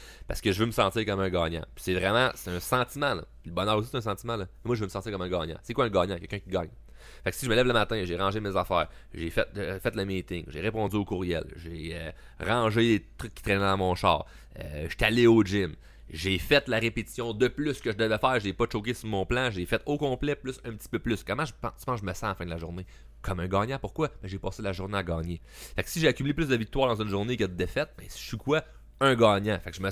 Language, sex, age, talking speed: French, male, 30-49, 295 wpm